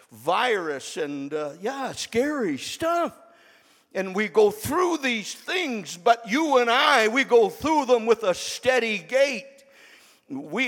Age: 60-79